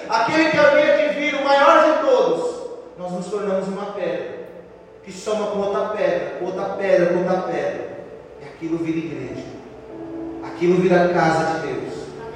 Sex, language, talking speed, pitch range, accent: male, Portuguese, 155 wpm, 180-260 Hz, Brazilian